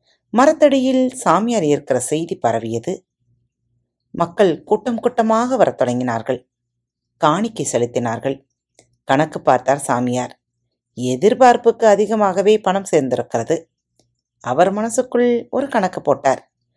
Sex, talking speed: female, 85 wpm